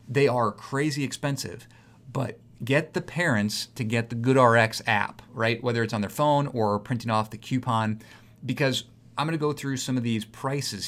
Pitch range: 105-120 Hz